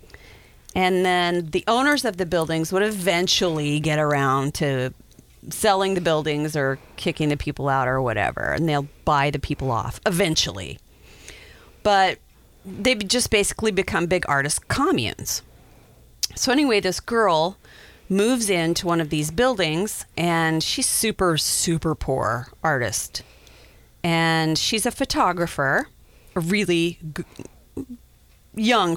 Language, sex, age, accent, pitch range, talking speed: English, female, 40-59, American, 145-195 Hz, 125 wpm